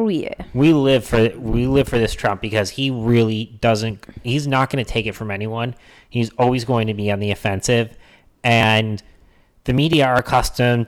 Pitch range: 100-125 Hz